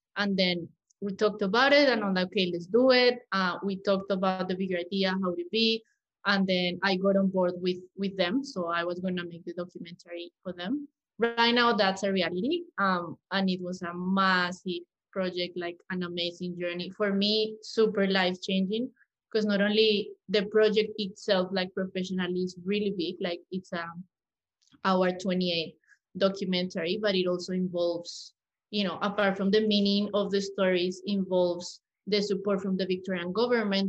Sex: female